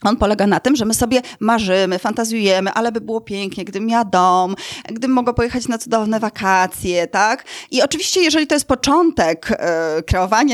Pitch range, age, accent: 205-260 Hz, 20-39, native